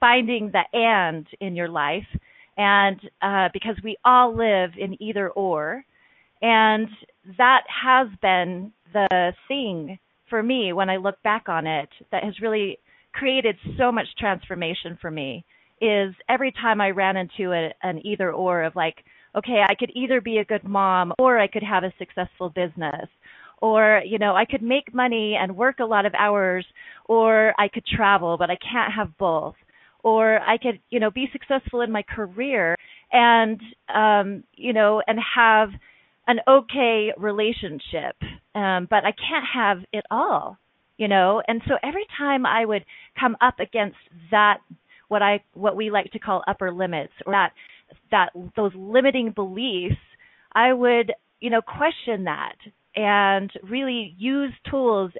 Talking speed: 165 wpm